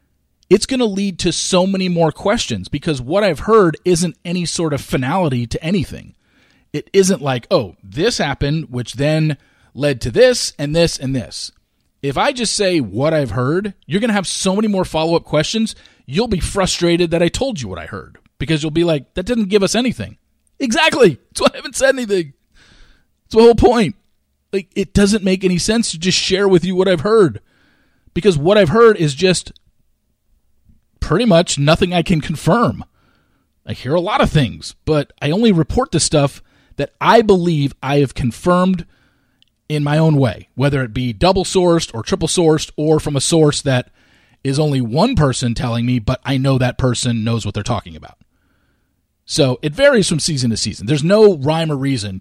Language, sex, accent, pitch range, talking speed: English, male, American, 130-190 Hz, 195 wpm